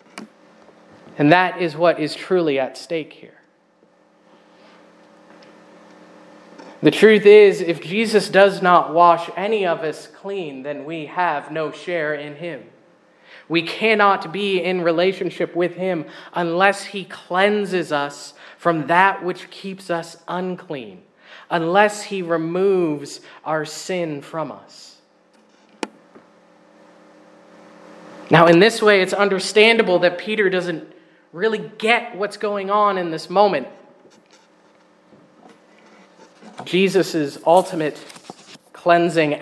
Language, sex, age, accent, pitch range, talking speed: English, male, 30-49, American, 155-190 Hz, 110 wpm